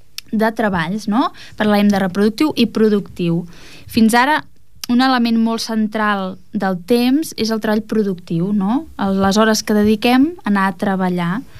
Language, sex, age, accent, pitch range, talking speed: English, female, 20-39, Spanish, 200-235 Hz, 145 wpm